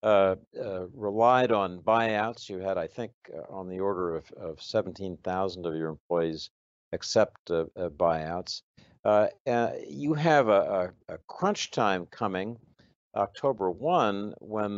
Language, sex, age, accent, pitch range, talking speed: English, male, 60-79, American, 85-115 Hz, 140 wpm